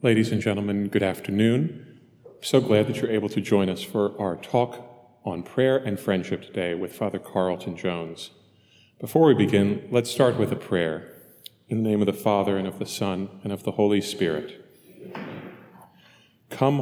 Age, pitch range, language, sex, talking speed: 40-59, 100-130 Hz, English, male, 175 wpm